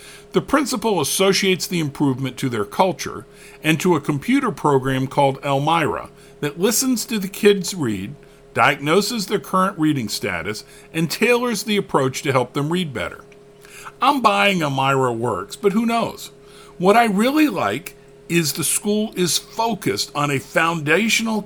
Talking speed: 150 wpm